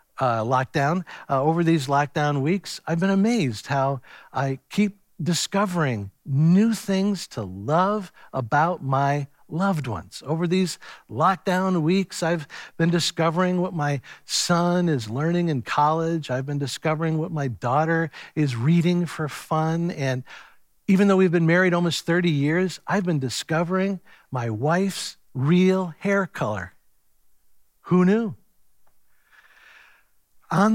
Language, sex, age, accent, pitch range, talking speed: English, male, 60-79, American, 140-190 Hz, 130 wpm